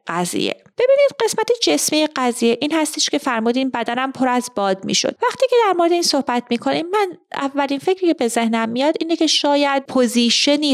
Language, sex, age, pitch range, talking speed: Persian, female, 30-49, 200-275 Hz, 190 wpm